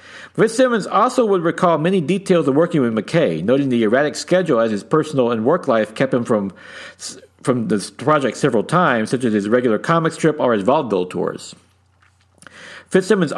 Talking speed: 175 wpm